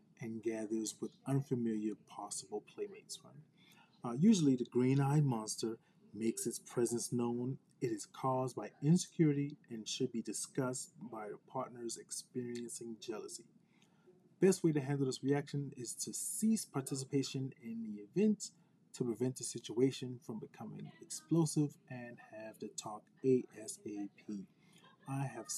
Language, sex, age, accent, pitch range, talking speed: English, male, 30-49, American, 115-155 Hz, 135 wpm